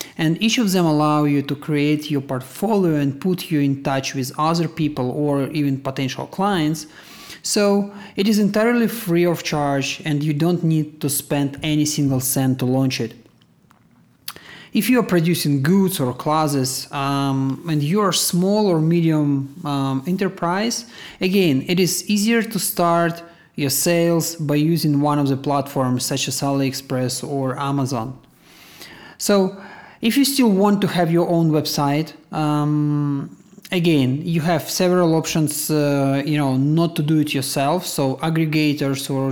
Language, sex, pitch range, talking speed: English, male, 140-170 Hz, 155 wpm